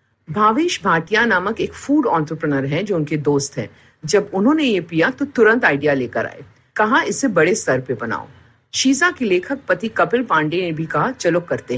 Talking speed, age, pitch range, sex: 180 wpm, 50-69, 140-225 Hz, female